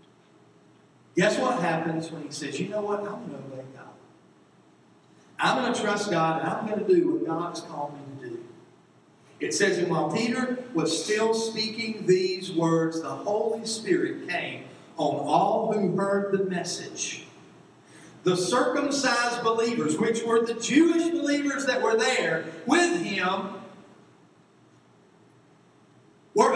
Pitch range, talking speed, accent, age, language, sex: 200-320 Hz, 145 wpm, American, 50-69, English, male